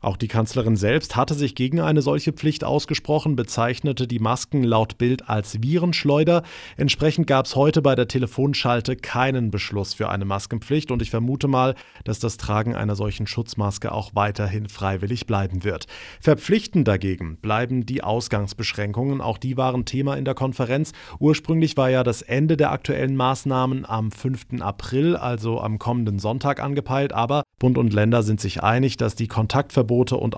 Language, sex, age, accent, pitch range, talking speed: German, male, 30-49, German, 110-135 Hz, 165 wpm